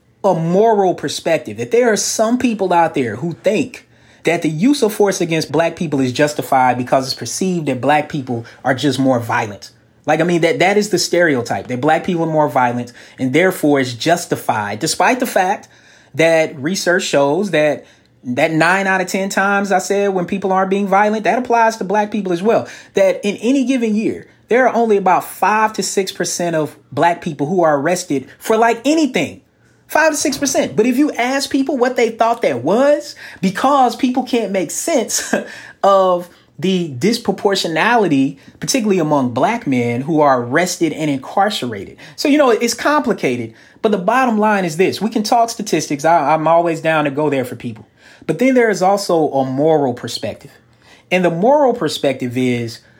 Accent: American